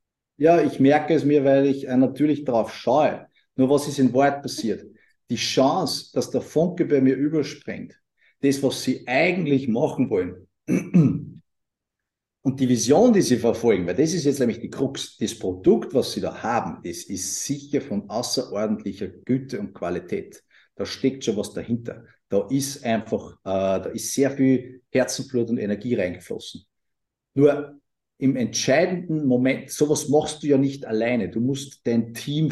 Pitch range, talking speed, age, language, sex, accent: 120-150 Hz, 160 wpm, 50-69, German, male, Austrian